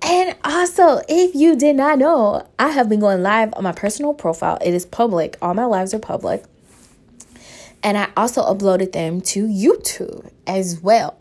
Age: 20-39